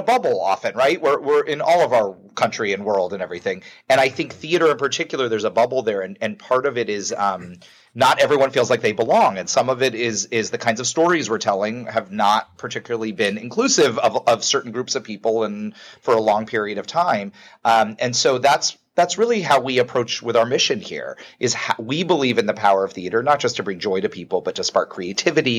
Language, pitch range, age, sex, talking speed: English, 110-135 Hz, 30-49, male, 230 wpm